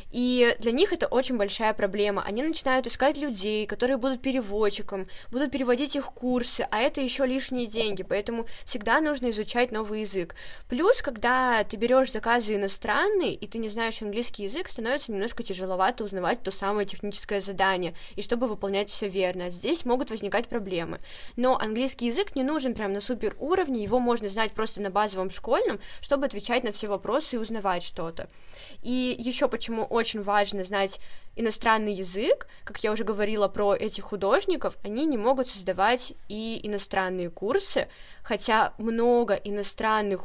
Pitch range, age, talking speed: 205-260 Hz, 20-39, 160 wpm